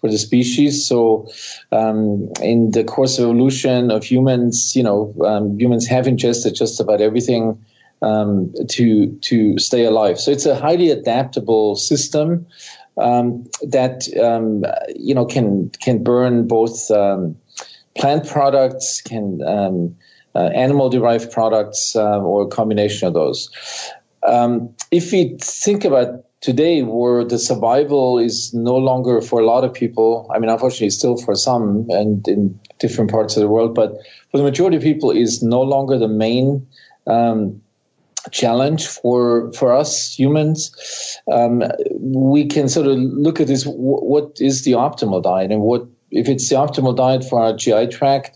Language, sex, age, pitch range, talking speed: English, male, 40-59, 110-135 Hz, 160 wpm